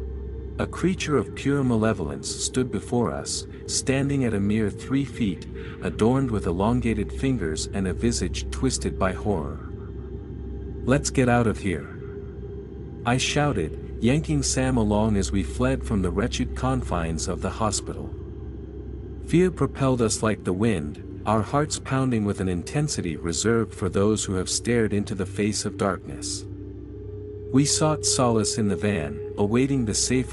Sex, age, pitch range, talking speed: male, 50-69, 90-120 Hz, 150 wpm